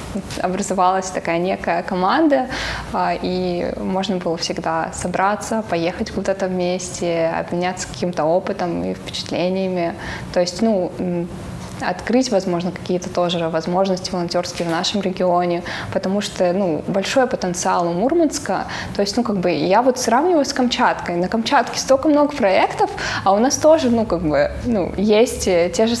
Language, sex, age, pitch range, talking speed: Russian, female, 20-39, 175-225 Hz, 145 wpm